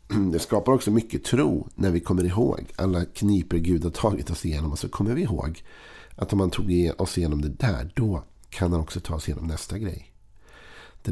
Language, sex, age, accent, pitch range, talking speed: Swedish, male, 50-69, native, 85-105 Hz, 210 wpm